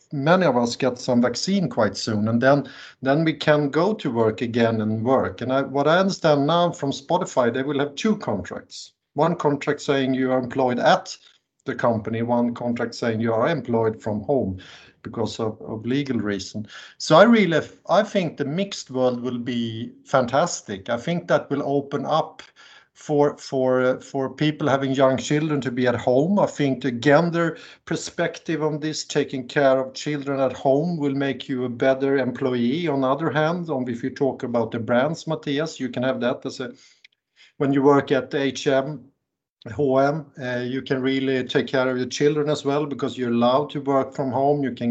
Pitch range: 120-145 Hz